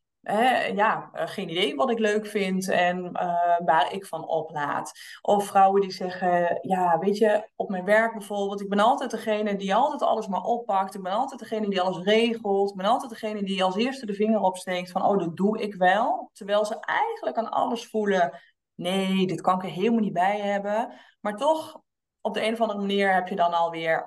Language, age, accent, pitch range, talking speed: Dutch, 20-39, Dutch, 175-215 Hz, 210 wpm